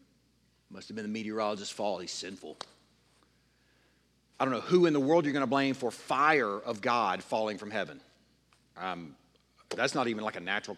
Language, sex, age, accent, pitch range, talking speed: English, male, 50-69, American, 95-140 Hz, 185 wpm